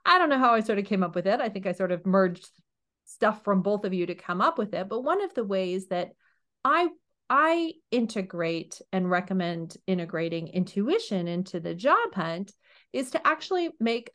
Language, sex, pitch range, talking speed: English, female, 180-275 Hz, 205 wpm